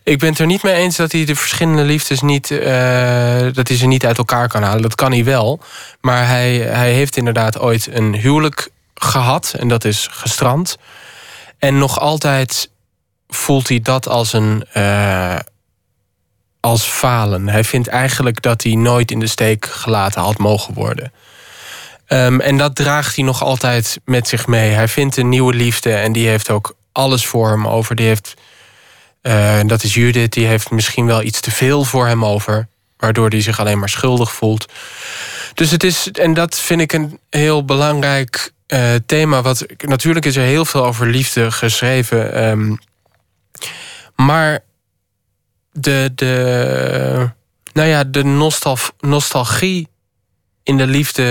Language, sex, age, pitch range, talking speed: Dutch, male, 20-39, 110-135 Hz, 160 wpm